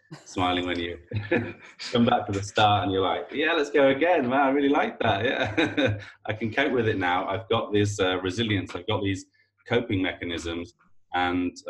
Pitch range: 90-105 Hz